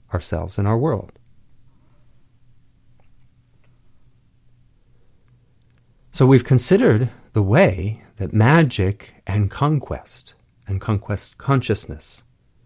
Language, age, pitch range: English, 50-69, 100-125 Hz